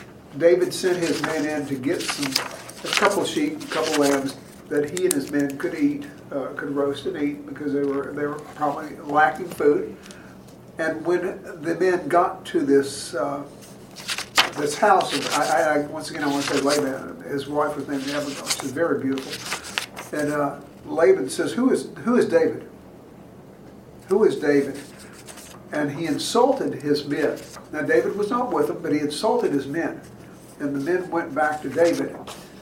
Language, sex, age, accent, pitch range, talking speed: English, male, 50-69, American, 140-175 Hz, 180 wpm